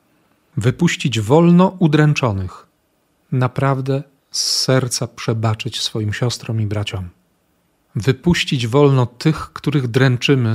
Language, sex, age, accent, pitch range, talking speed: Polish, male, 40-59, native, 115-150 Hz, 90 wpm